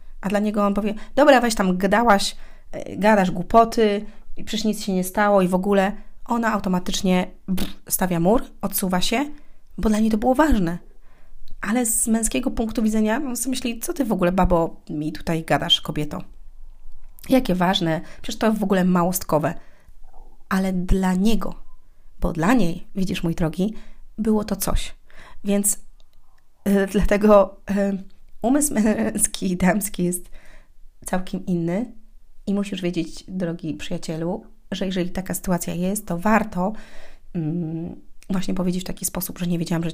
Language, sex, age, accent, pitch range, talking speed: Polish, female, 30-49, native, 170-210 Hz, 150 wpm